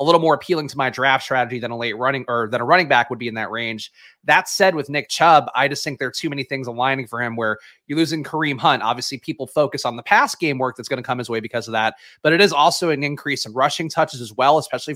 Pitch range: 120-150 Hz